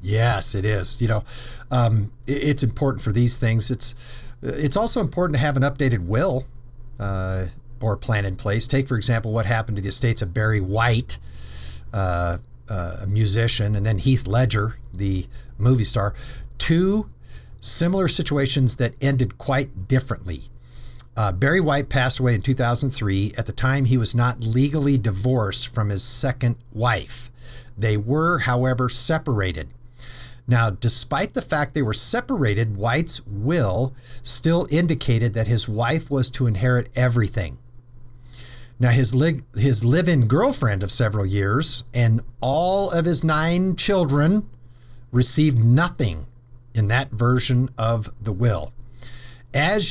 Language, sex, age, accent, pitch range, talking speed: English, male, 50-69, American, 110-135 Hz, 145 wpm